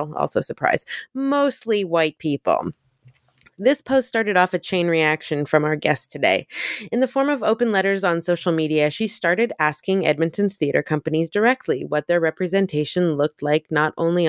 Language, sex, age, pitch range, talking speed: English, female, 20-39, 155-220 Hz, 165 wpm